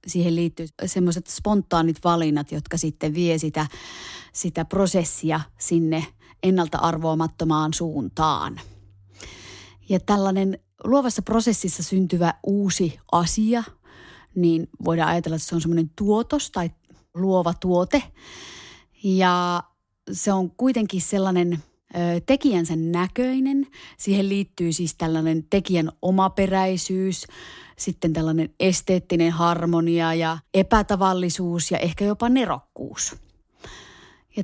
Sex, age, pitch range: female, 30-49, 160-190 Hz